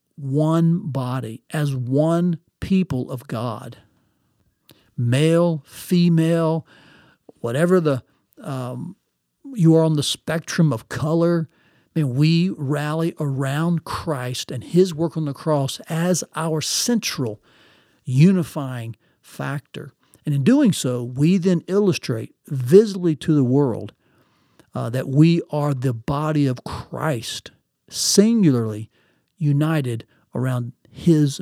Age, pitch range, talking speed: 50-69, 135-170 Hz, 115 wpm